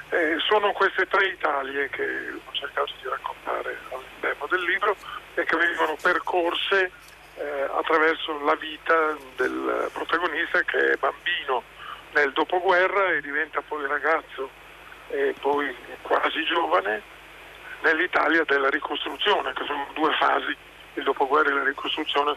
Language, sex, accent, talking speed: Italian, male, native, 130 wpm